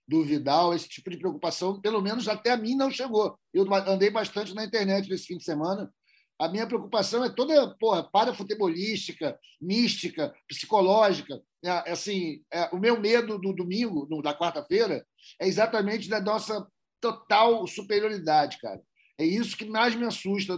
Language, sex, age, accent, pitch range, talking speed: Portuguese, male, 50-69, Brazilian, 165-210 Hz, 160 wpm